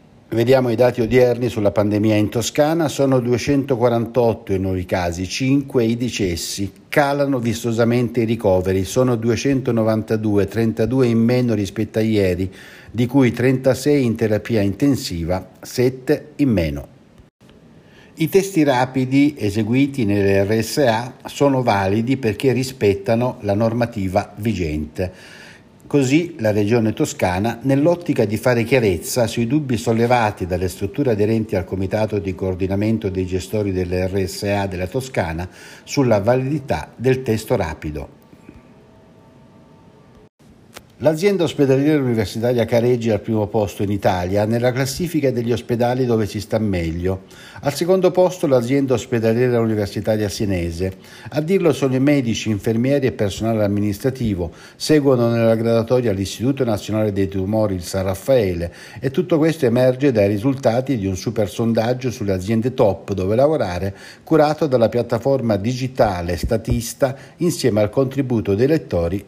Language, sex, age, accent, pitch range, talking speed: Italian, male, 60-79, native, 100-130 Hz, 125 wpm